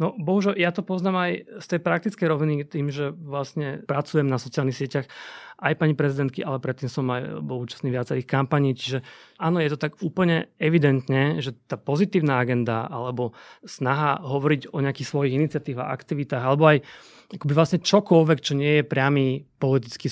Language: Slovak